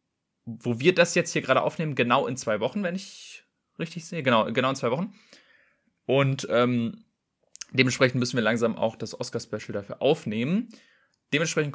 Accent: German